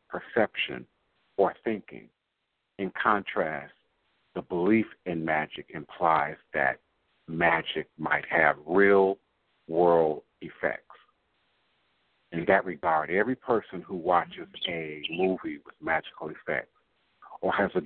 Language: English